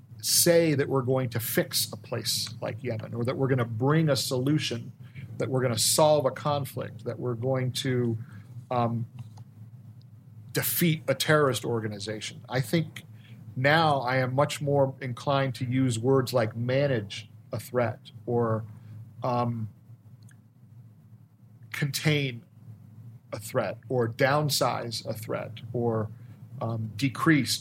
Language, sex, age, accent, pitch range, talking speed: English, male, 40-59, American, 115-140 Hz, 135 wpm